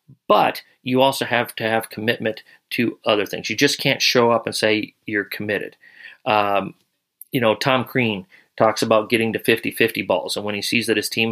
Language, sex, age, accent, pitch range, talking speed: English, male, 30-49, American, 110-130 Hz, 195 wpm